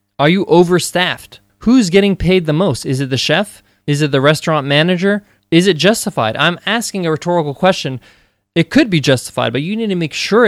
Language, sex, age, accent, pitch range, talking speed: English, male, 20-39, American, 135-170 Hz, 200 wpm